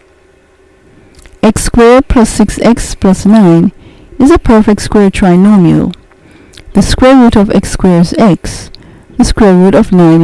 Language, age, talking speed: English, 50-69, 140 wpm